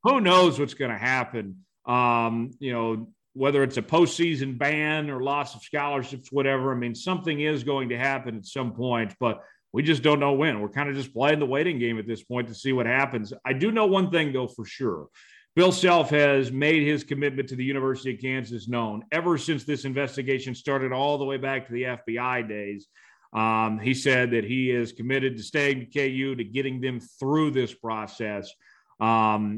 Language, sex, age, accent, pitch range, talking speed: English, male, 40-59, American, 120-140 Hz, 205 wpm